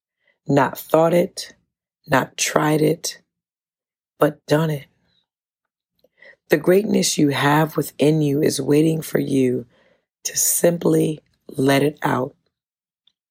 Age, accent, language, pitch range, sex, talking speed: 40-59, American, English, 140-165 Hz, female, 110 wpm